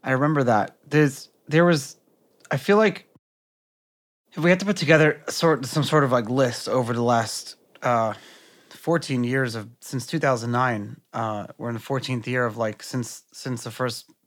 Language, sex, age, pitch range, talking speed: English, male, 30-49, 125-150 Hz, 180 wpm